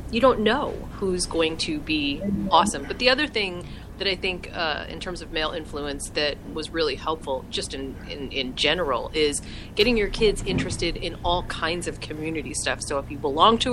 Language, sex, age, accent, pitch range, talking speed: English, female, 30-49, American, 160-230 Hz, 200 wpm